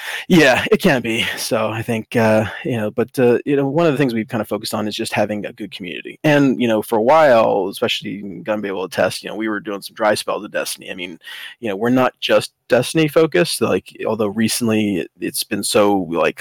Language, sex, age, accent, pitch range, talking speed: English, male, 20-39, American, 105-125 Hz, 250 wpm